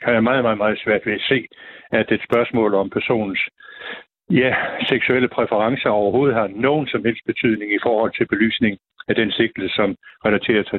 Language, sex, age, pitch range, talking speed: Danish, male, 60-79, 110-130 Hz, 185 wpm